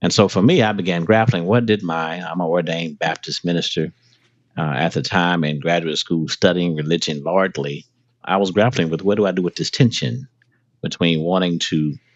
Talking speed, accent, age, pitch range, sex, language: 190 wpm, American, 50-69, 80-115 Hz, male, English